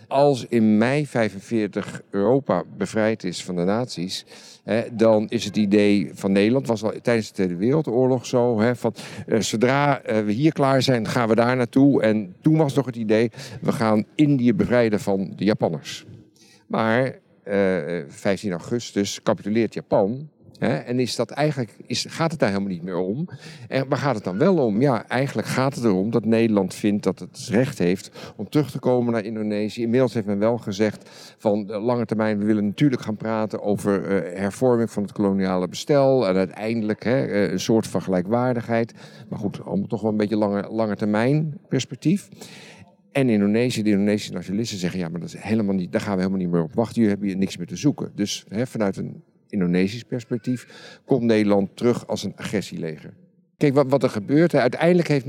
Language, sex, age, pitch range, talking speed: Dutch, male, 50-69, 100-130 Hz, 190 wpm